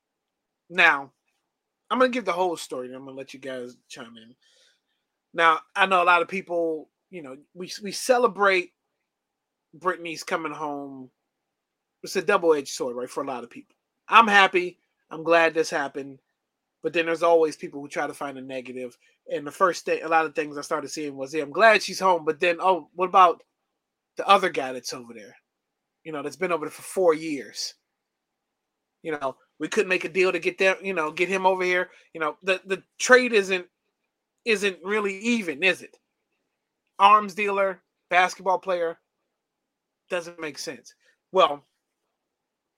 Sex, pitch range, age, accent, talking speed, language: male, 150-190 Hz, 30-49, American, 180 wpm, English